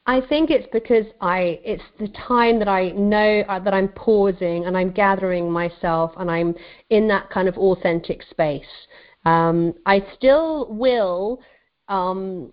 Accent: British